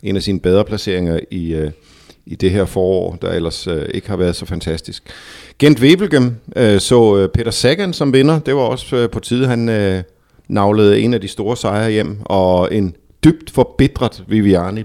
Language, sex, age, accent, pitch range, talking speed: Danish, male, 50-69, native, 95-125 Hz, 195 wpm